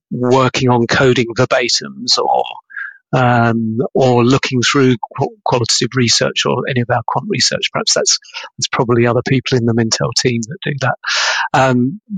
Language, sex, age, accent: English, male, 40-59, British